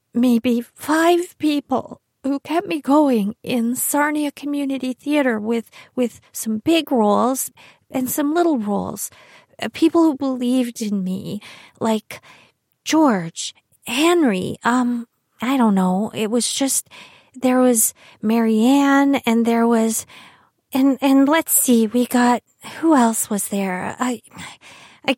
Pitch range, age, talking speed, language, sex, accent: 215-270 Hz, 40-59, 130 wpm, English, female, American